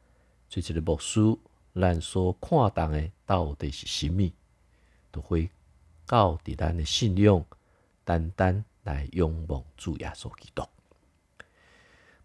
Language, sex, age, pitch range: Chinese, male, 50-69, 80-100 Hz